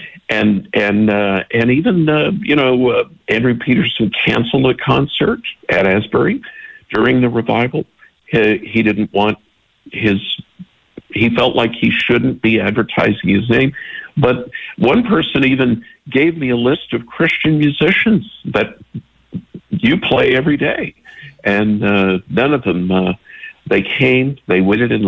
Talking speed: 145 wpm